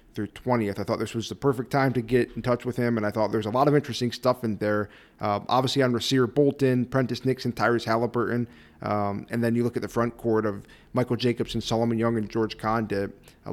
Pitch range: 110-125 Hz